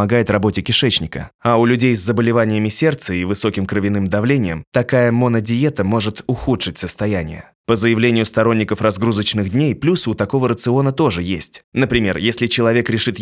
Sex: male